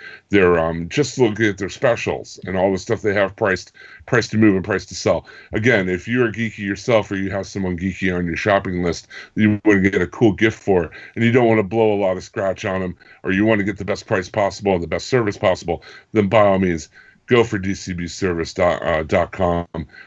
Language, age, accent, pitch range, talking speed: English, 50-69, American, 95-115 Hz, 235 wpm